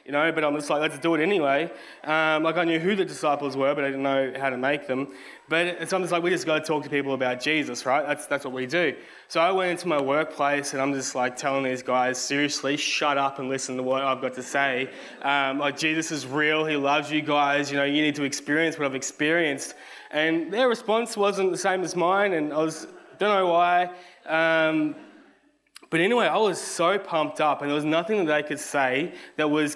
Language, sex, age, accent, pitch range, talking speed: English, male, 20-39, Australian, 140-180 Hz, 240 wpm